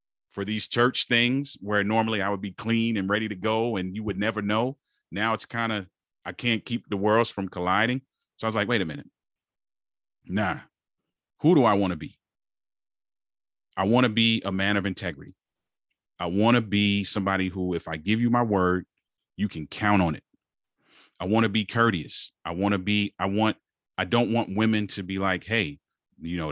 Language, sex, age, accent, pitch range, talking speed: English, male, 30-49, American, 90-110 Hz, 205 wpm